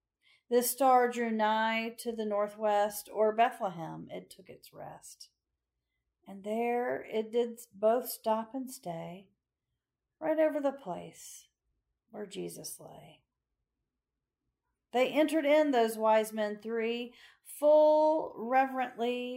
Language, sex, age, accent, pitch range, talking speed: English, female, 40-59, American, 165-235 Hz, 115 wpm